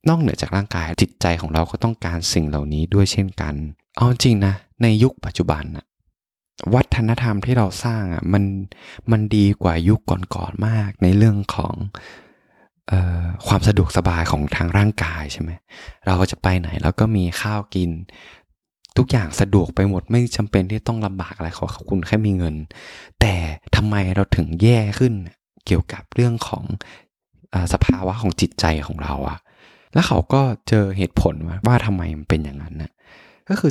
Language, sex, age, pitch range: Thai, male, 20-39, 85-110 Hz